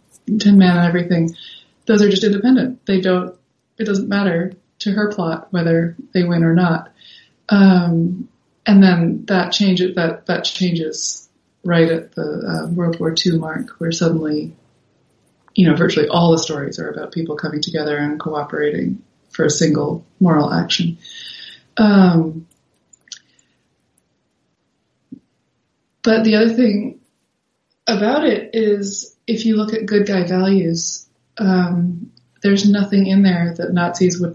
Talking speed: 140 wpm